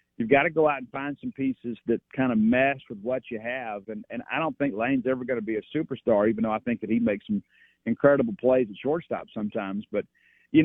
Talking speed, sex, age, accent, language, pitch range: 250 wpm, male, 40-59, American, English, 115-145 Hz